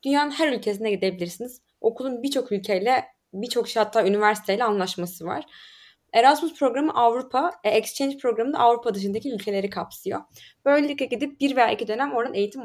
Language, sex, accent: Turkish, female, native